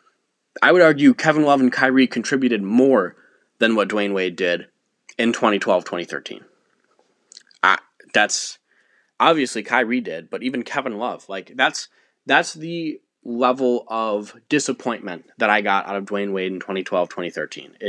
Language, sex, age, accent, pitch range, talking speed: English, male, 20-39, American, 100-135 Hz, 140 wpm